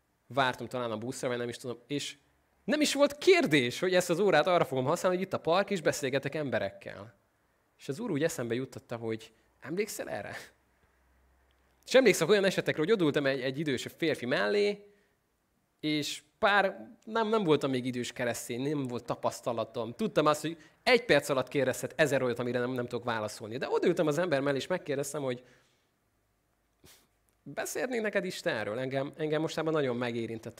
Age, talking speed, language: 20-39, 175 wpm, Hungarian